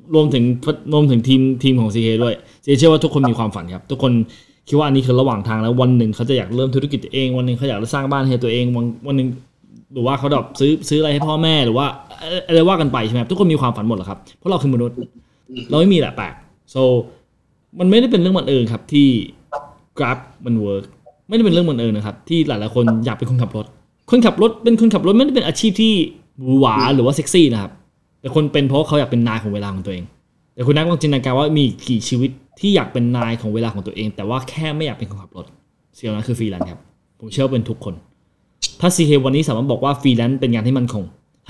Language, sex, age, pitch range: Thai, male, 20-39, 115-150 Hz